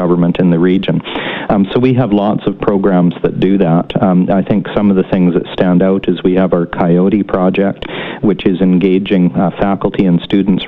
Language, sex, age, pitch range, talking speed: English, male, 50-69, 90-95 Hz, 210 wpm